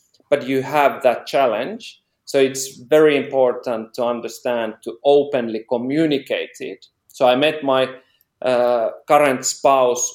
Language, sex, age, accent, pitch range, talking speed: English, male, 40-59, Finnish, 120-150 Hz, 130 wpm